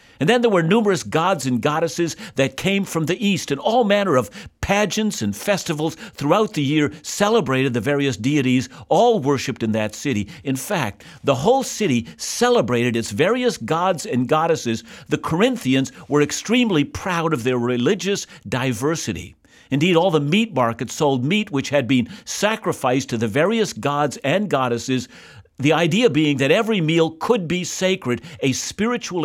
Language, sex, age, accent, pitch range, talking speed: English, male, 60-79, American, 125-185 Hz, 165 wpm